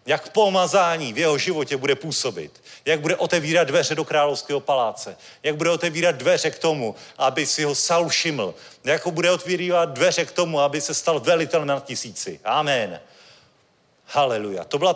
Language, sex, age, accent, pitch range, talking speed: Czech, male, 40-59, native, 145-180 Hz, 165 wpm